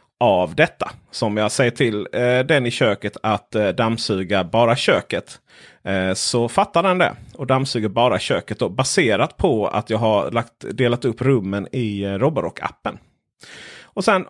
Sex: male